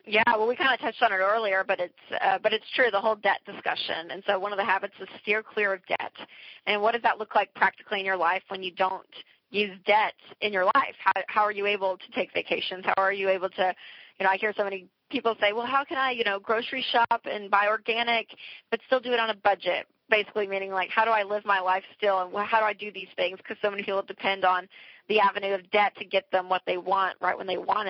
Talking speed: 265 wpm